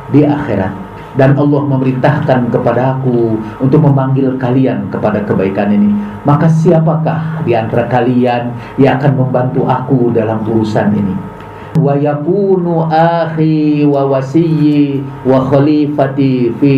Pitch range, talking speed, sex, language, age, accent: 120-160 Hz, 90 wpm, male, Indonesian, 50-69, native